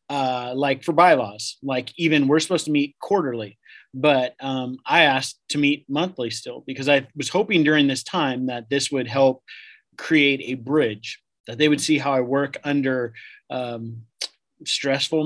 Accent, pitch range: American, 130-150 Hz